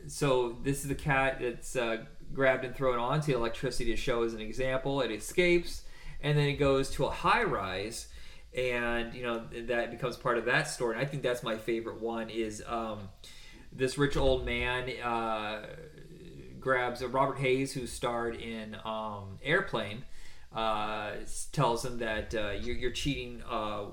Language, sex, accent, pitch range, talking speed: English, male, American, 110-135 Hz, 170 wpm